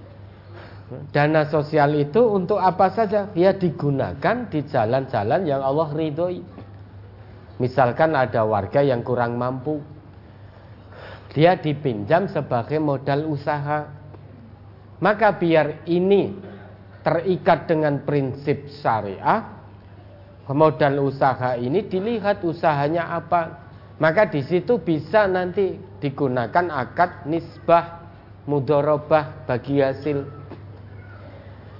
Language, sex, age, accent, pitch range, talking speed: Indonesian, male, 40-59, native, 105-170 Hz, 90 wpm